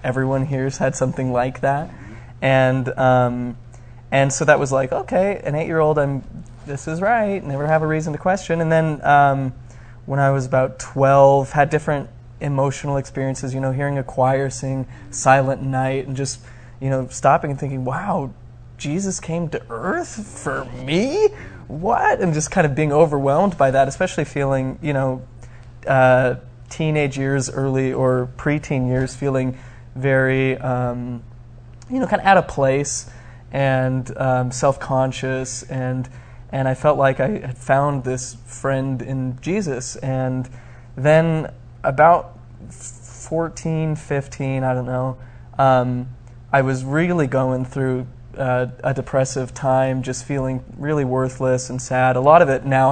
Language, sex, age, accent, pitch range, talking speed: English, male, 20-39, American, 125-140 Hz, 150 wpm